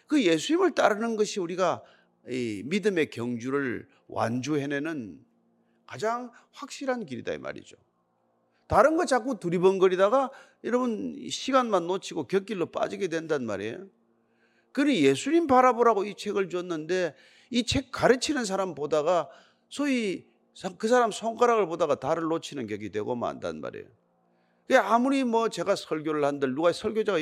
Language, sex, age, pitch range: Korean, male, 40-59, 165-260 Hz